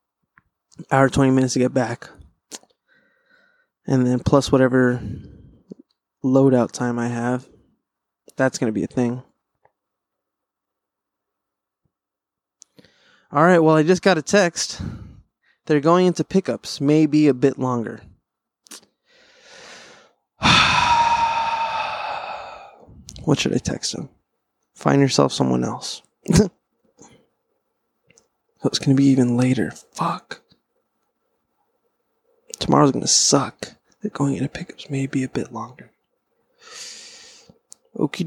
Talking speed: 105 wpm